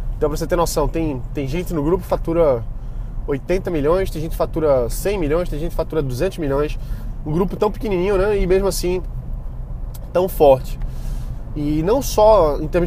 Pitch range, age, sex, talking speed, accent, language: 130-180 Hz, 20-39, male, 190 wpm, Brazilian, Portuguese